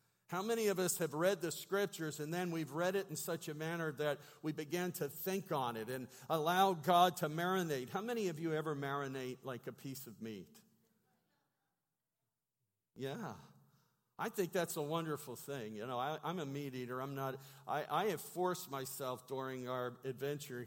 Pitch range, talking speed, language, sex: 140-190 Hz, 185 wpm, English, male